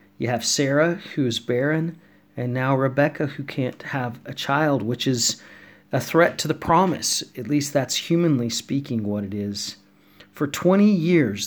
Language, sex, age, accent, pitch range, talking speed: English, male, 40-59, American, 115-145 Hz, 165 wpm